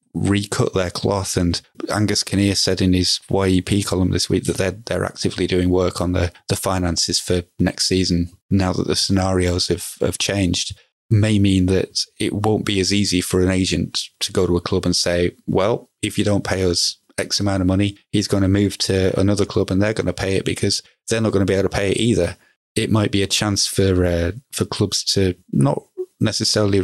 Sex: male